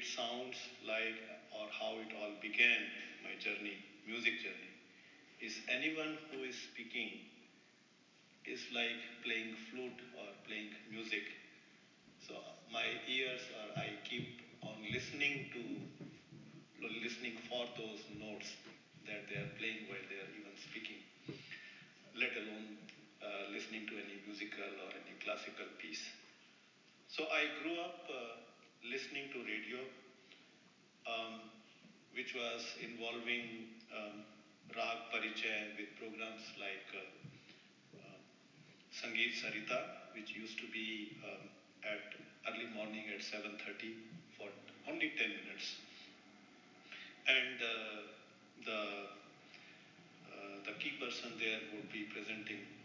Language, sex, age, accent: English, male, 50-69, Indian